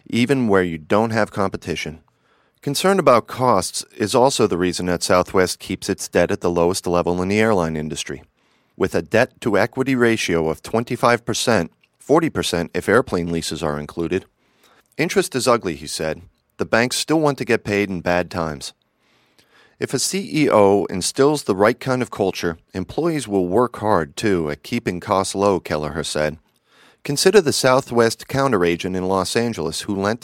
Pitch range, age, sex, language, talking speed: 90-125 Hz, 40-59, male, English, 165 wpm